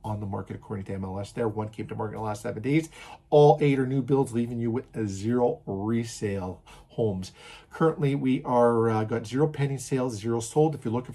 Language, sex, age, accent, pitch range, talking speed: English, male, 50-69, American, 120-150 Hz, 215 wpm